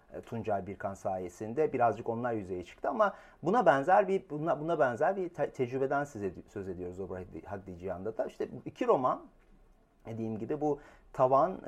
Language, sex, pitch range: Turkish, male, 115-155 Hz